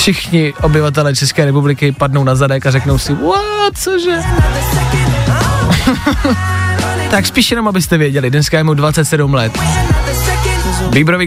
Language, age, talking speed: Czech, 20-39, 120 wpm